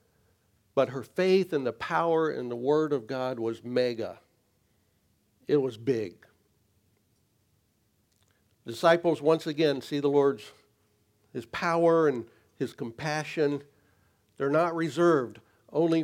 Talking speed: 115 wpm